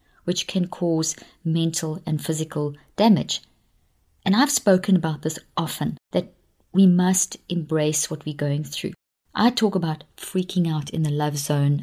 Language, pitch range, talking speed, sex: English, 155-200 Hz, 150 wpm, female